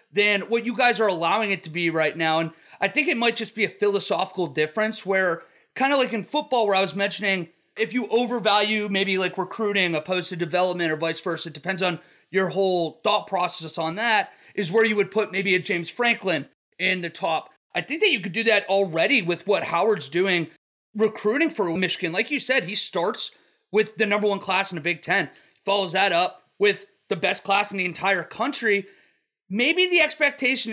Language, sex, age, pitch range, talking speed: English, male, 30-49, 185-230 Hz, 210 wpm